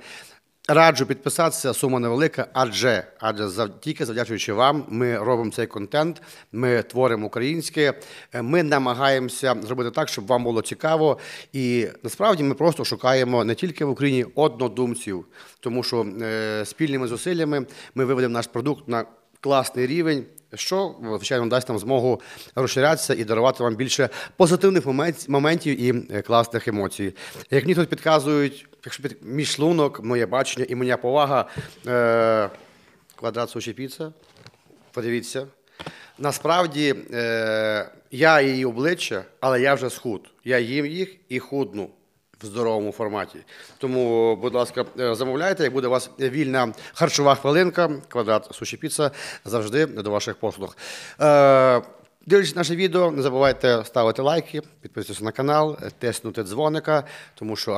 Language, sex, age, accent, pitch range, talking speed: Ukrainian, male, 40-59, native, 115-150 Hz, 130 wpm